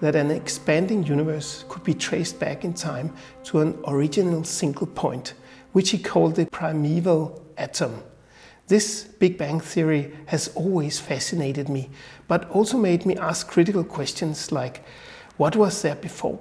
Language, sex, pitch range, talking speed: Danish, male, 155-185 Hz, 150 wpm